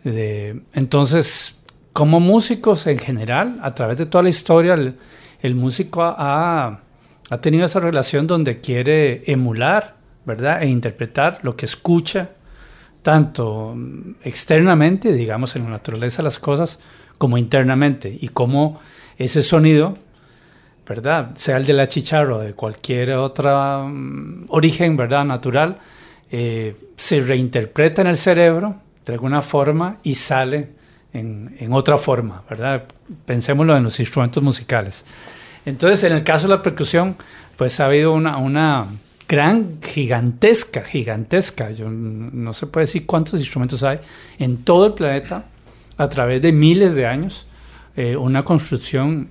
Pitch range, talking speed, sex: 125-160 Hz, 140 wpm, male